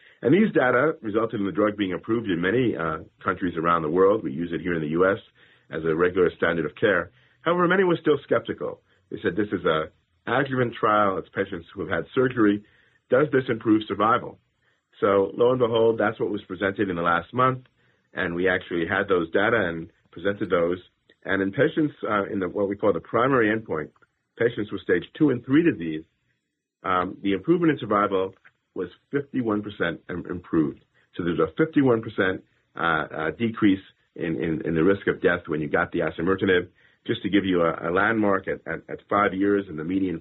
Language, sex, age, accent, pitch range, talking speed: English, male, 50-69, American, 90-115 Hz, 200 wpm